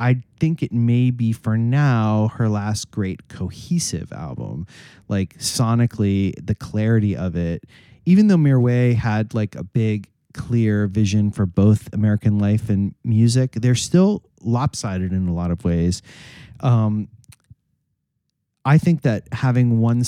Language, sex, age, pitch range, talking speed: English, male, 30-49, 105-125 Hz, 140 wpm